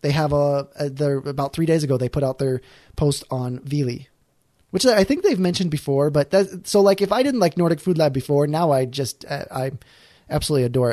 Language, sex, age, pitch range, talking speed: English, male, 20-39, 130-175 Hz, 220 wpm